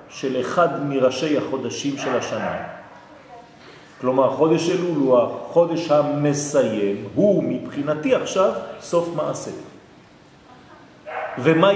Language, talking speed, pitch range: French, 90 wpm, 135-215 Hz